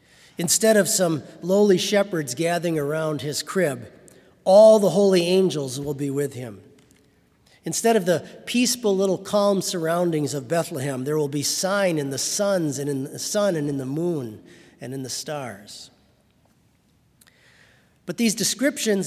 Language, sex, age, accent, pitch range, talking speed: English, male, 40-59, American, 140-185 Hz, 150 wpm